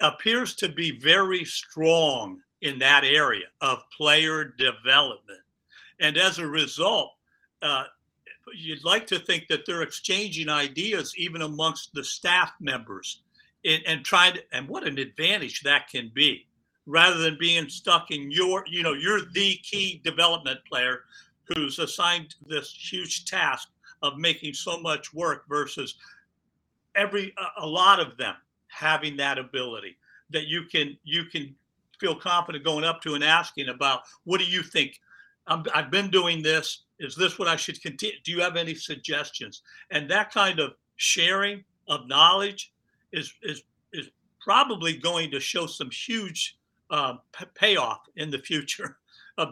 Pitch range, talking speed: 155-195 Hz, 155 wpm